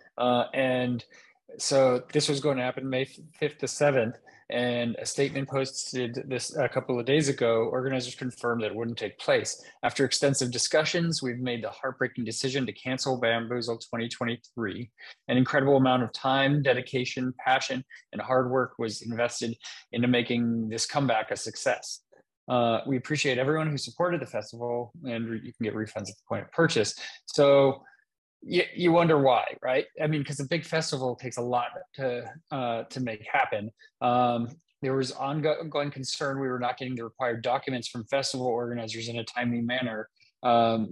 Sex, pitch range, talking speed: male, 120-135 Hz, 170 wpm